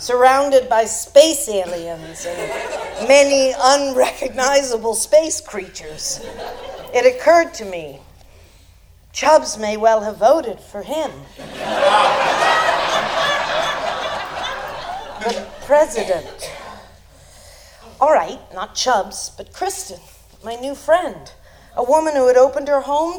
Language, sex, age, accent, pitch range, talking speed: English, female, 40-59, American, 210-280 Hz, 100 wpm